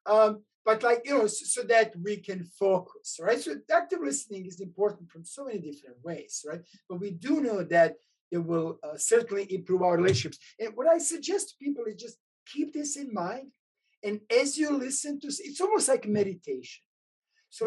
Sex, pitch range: male, 185-285 Hz